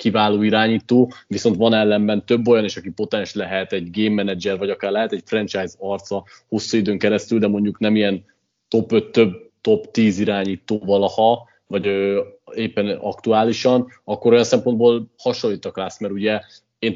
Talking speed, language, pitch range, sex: 160 wpm, Hungarian, 105-120 Hz, male